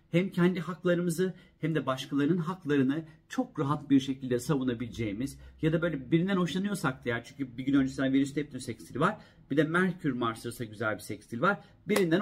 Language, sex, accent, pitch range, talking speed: Turkish, male, native, 125-160 Hz, 180 wpm